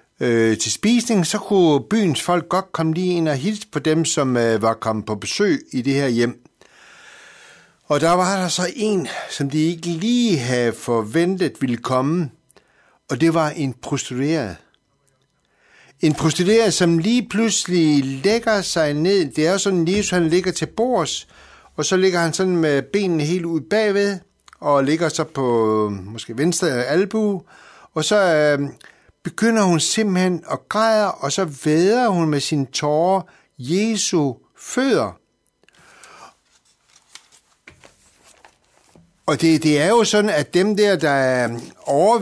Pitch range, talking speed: 140-190 Hz, 145 wpm